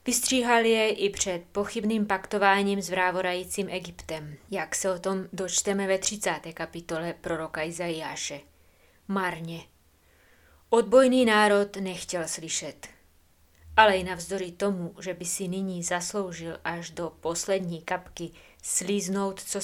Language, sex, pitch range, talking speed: Czech, female, 175-200 Hz, 120 wpm